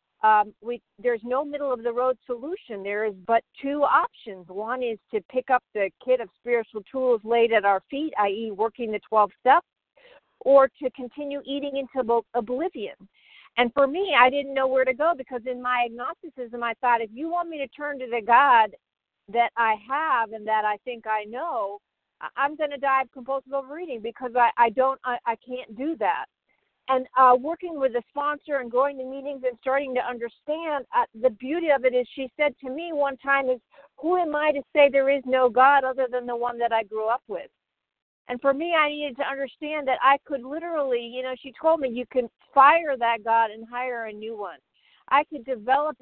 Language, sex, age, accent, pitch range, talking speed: English, female, 50-69, American, 235-280 Hz, 205 wpm